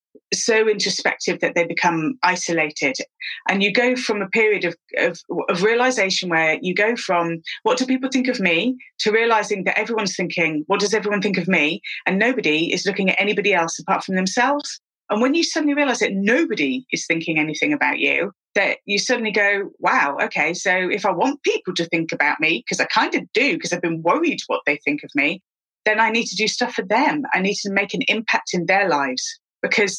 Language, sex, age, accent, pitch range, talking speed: English, female, 30-49, British, 170-225 Hz, 210 wpm